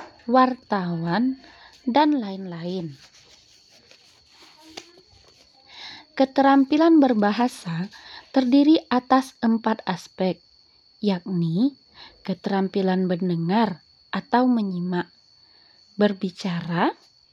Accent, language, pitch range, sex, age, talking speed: native, Indonesian, 190-265 Hz, female, 20-39, 50 wpm